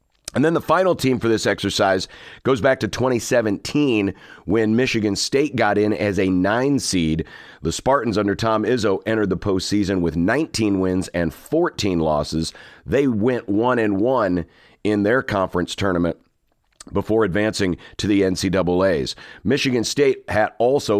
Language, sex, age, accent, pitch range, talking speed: English, male, 50-69, American, 95-120 Hz, 150 wpm